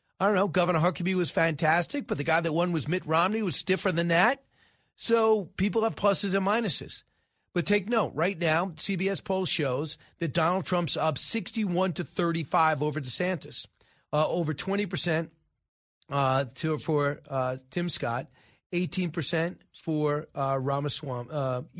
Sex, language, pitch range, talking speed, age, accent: male, English, 150-185 Hz, 160 wpm, 40-59, American